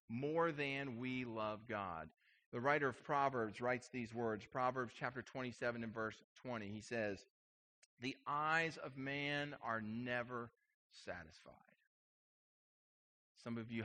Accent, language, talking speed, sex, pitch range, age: American, English, 130 wpm, male, 120-170 Hz, 40-59